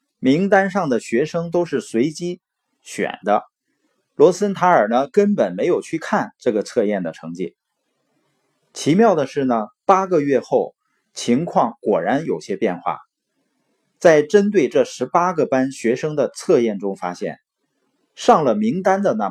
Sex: male